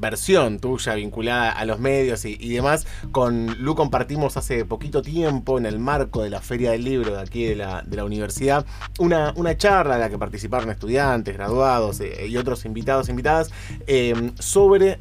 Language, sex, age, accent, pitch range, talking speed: Spanish, male, 20-39, Argentinian, 105-145 Hz, 175 wpm